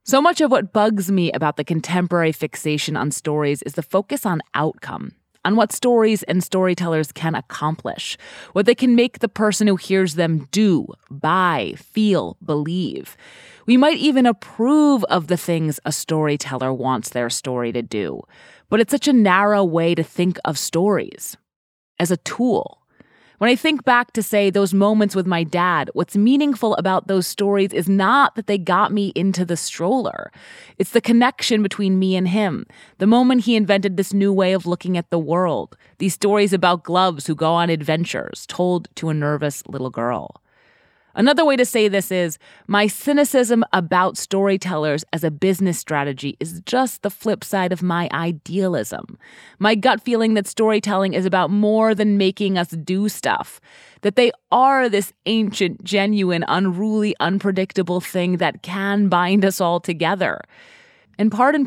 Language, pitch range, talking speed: English, 170-215 Hz, 170 wpm